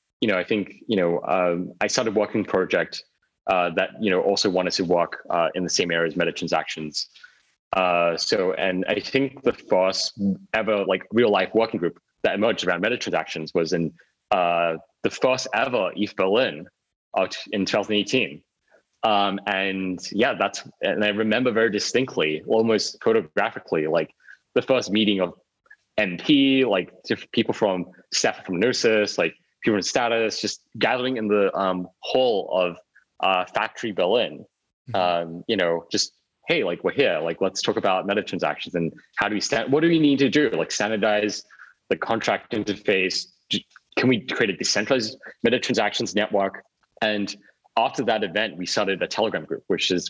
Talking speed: 170 wpm